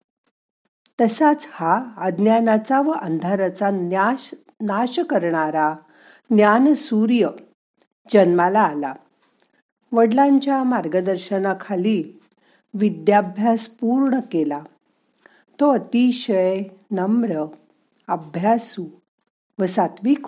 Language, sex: Marathi, female